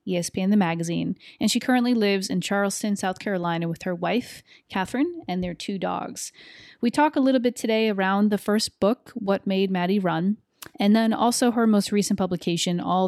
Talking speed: 190 wpm